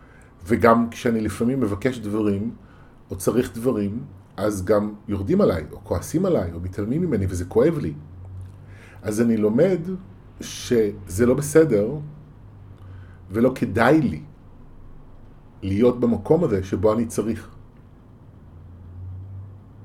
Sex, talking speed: male, 110 wpm